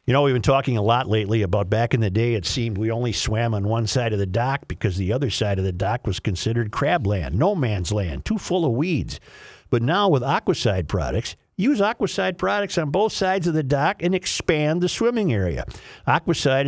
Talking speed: 225 wpm